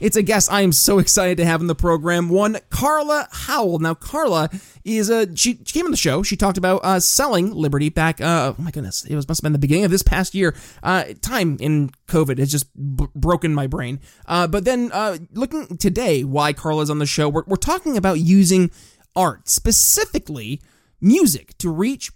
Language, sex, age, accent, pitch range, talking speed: English, male, 20-39, American, 155-205 Hz, 210 wpm